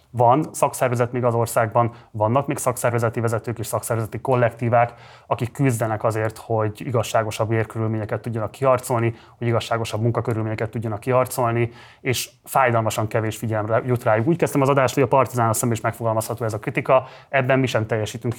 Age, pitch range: 30-49, 110-125 Hz